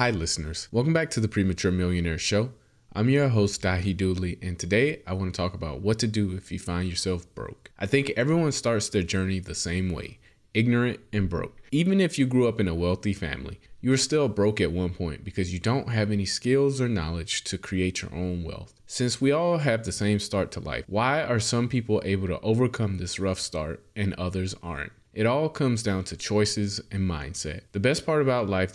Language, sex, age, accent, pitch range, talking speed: English, male, 20-39, American, 90-120 Hz, 220 wpm